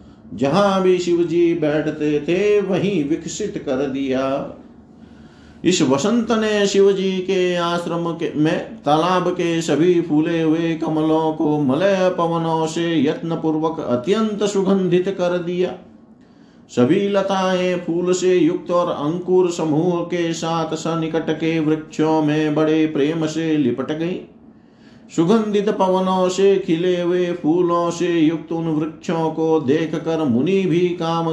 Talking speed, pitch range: 130 wpm, 155-190 Hz